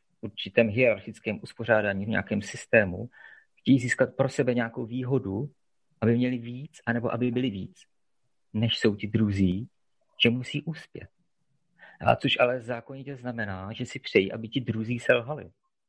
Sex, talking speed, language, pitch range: male, 145 wpm, Czech, 115-140 Hz